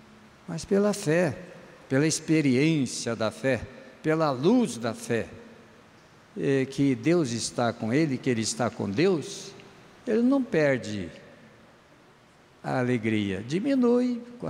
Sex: male